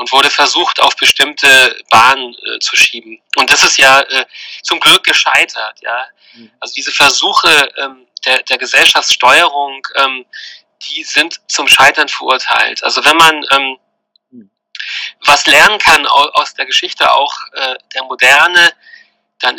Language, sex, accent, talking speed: German, male, German, 140 wpm